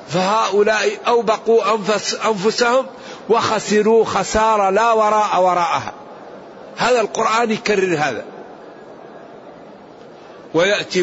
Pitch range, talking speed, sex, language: 185-230 Hz, 75 wpm, male, Arabic